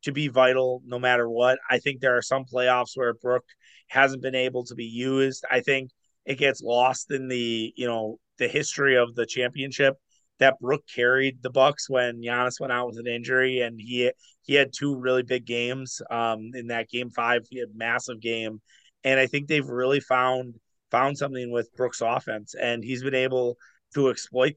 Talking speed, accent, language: 200 wpm, American, English